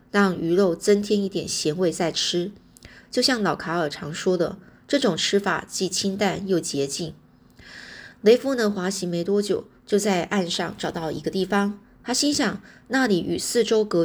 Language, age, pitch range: Chinese, 20-39, 165-205 Hz